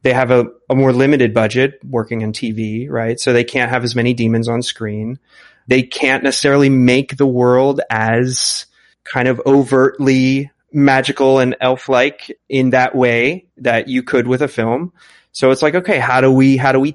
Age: 30-49